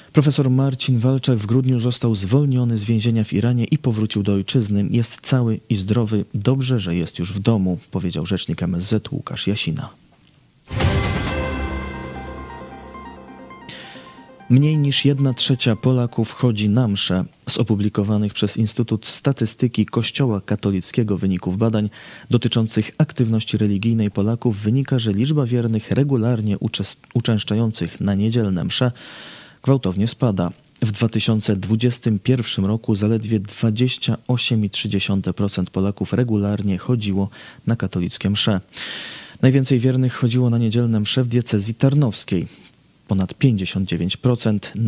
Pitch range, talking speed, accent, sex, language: 100-125 Hz, 115 wpm, native, male, Polish